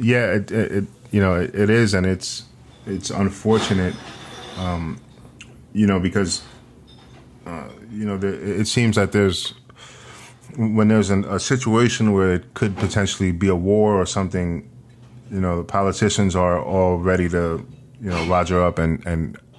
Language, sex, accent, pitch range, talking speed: English, male, American, 90-115 Hz, 160 wpm